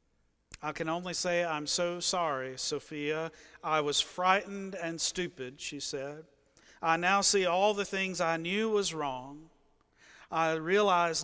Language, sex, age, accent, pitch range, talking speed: English, male, 50-69, American, 160-195 Hz, 145 wpm